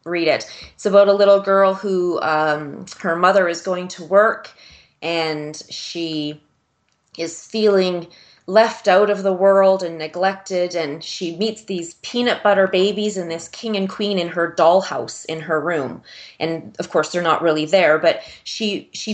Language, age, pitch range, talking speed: English, 30-49, 170-195 Hz, 170 wpm